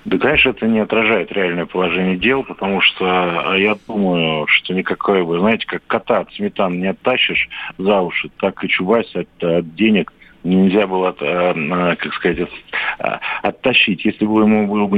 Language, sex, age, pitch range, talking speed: Russian, male, 50-69, 90-105 Hz, 155 wpm